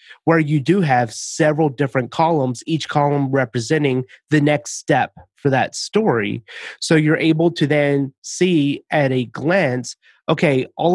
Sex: male